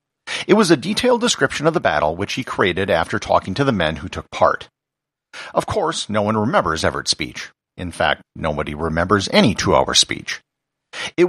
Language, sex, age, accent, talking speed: English, male, 50-69, American, 180 wpm